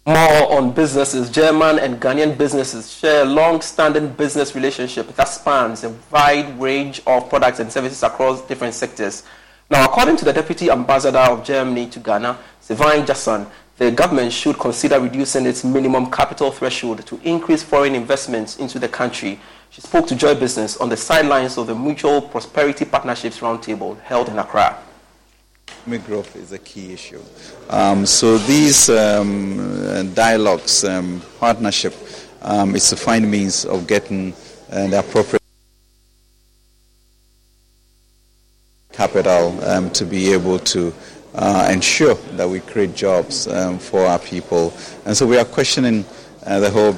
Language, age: English, 30-49